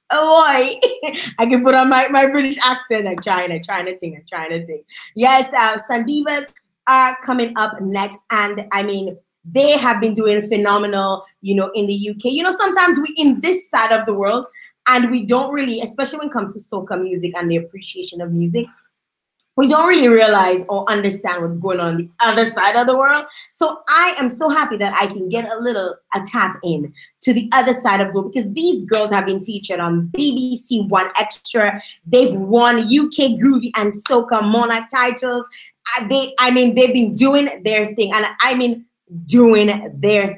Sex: female